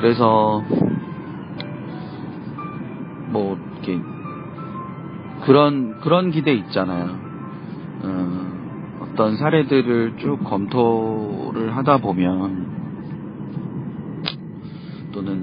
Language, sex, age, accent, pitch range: Korean, male, 40-59, native, 105-160 Hz